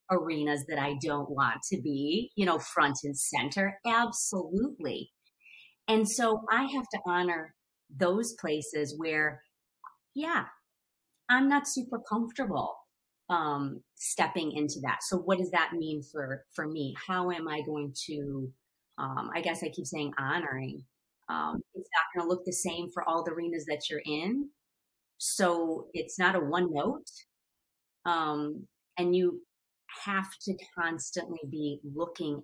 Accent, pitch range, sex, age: American, 145-185 Hz, female, 30-49